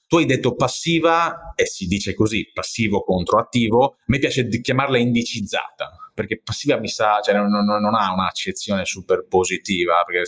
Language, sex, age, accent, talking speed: Italian, male, 30-49, native, 165 wpm